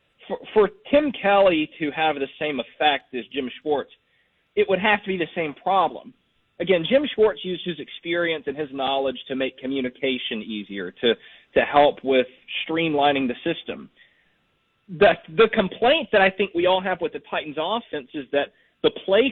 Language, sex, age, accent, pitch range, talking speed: English, male, 40-59, American, 140-215 Hz, 175 wpm